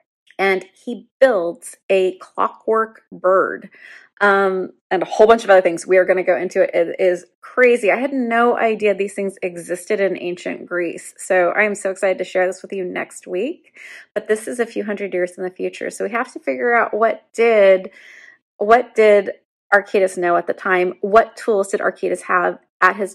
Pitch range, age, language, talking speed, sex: 185-230 Hz, 30-49, English, 200 wpm, female